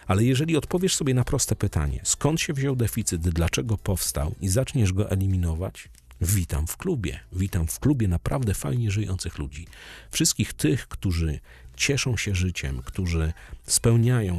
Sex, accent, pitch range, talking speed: male, native, 85-115 Hz, 145 wpm